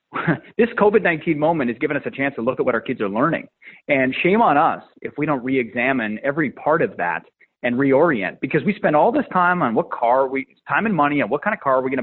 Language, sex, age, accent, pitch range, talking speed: English, male, 30-49, American, 130-200 Hz, 255 wpm